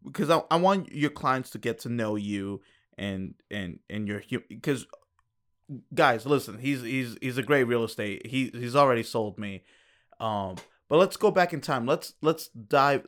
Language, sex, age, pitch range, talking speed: English, male, 20-39, 105-135 Hz, 185 wpm